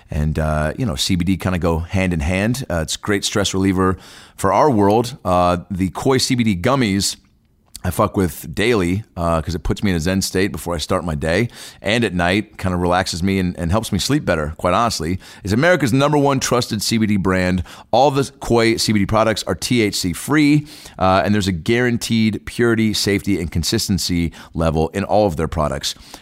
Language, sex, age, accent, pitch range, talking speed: English, male, 30-49, American, 90-130 Hz, 200 wpm